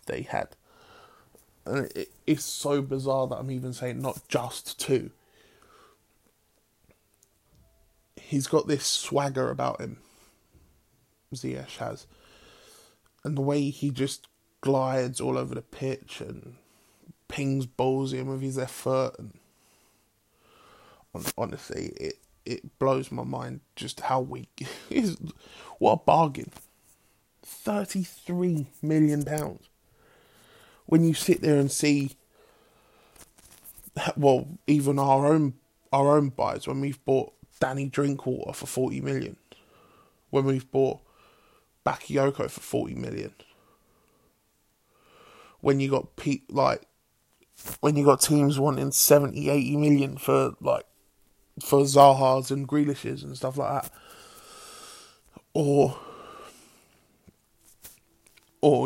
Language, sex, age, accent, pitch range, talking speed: English, male, 20-39, British, 130-150 Hz, 110 wpm